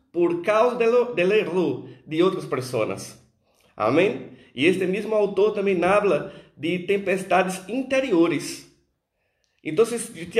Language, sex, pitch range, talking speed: Portuguese, male, 175-215 Hz, 115 wpm